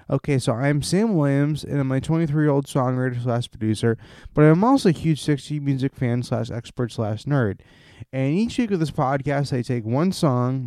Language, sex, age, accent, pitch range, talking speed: English, male, 20-39, American, 125-150 Hz, 150 wpm